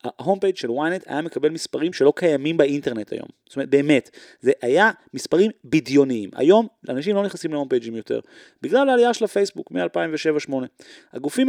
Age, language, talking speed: 30-49, Hebrew, 160 wpm